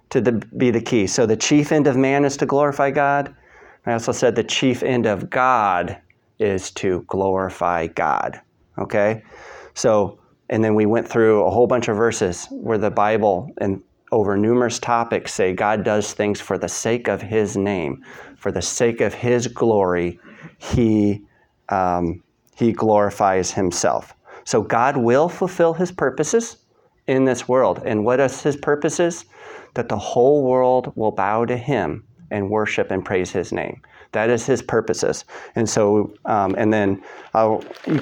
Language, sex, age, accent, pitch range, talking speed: English, male, 30-49, American, 105-125 Hz, 165 wpm